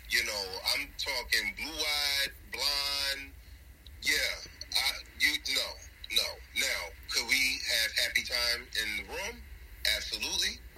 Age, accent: 30-49, American